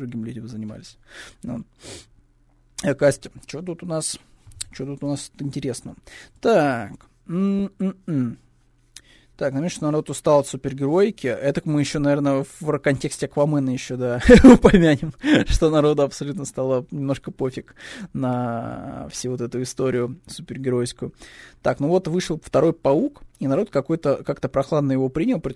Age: 20-39